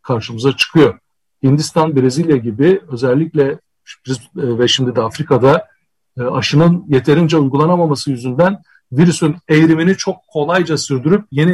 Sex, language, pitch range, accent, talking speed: male, Turkish, 135-170 Hz, native, 105 wpm